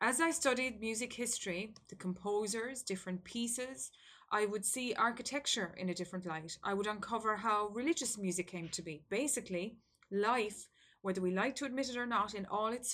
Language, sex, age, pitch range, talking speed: English, female, 20-39, 185-225 Hz, 180 wpm